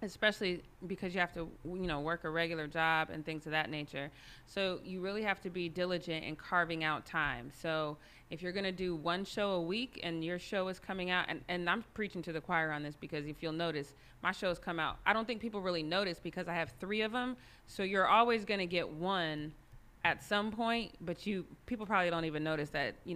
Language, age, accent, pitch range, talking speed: English, 30-49, American, 160-190 Hz, 235 wpm